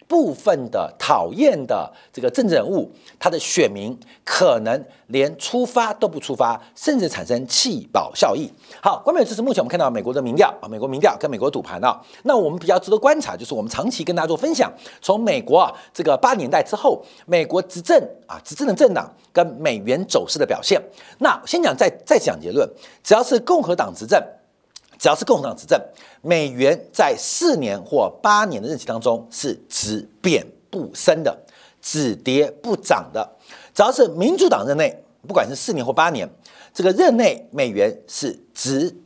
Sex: male